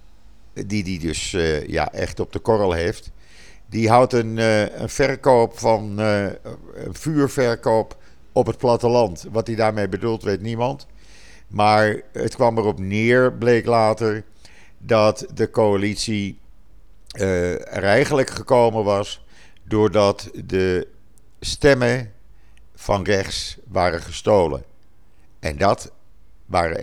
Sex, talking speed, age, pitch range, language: male, 115 wpm, 50-69, 90-115 Hz, Dutch